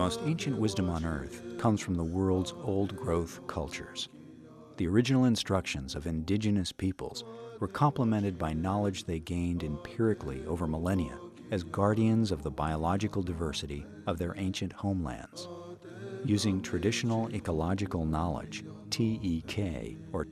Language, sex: English, male